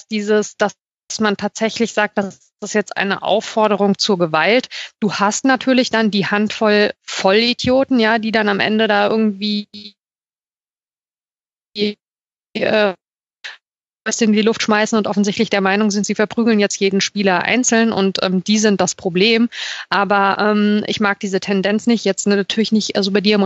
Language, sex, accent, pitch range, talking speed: German, female, German, 200-230 Hz, 160 wpm